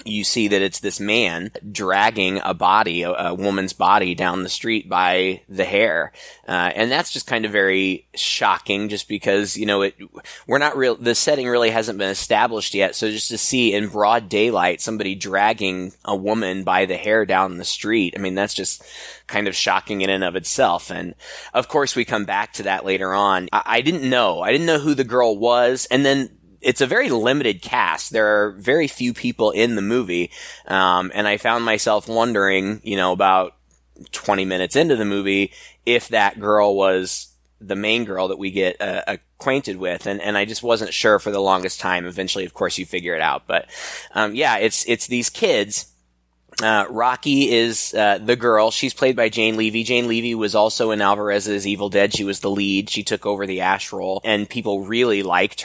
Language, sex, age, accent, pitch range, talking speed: English, male, 20-39, American, 95-115 Hz, 205 wpm